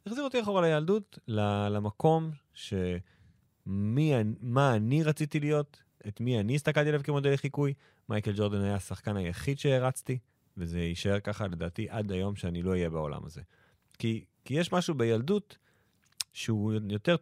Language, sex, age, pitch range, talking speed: Hebrew, male, 30-49, 100-145 Hz, 145 wpm